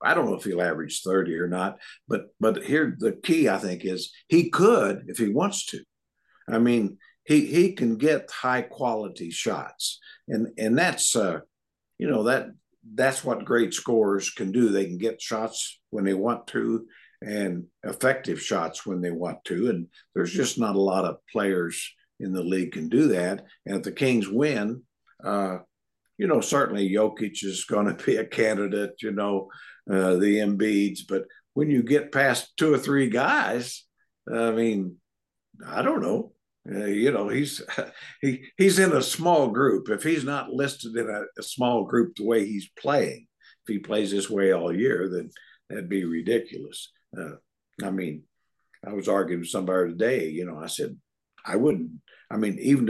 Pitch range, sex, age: 95-120 Hz, male, 60-79